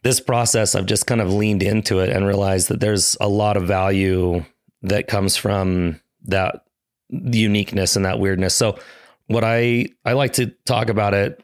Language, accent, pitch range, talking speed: English, American, 95-115 Hz, 180 wpm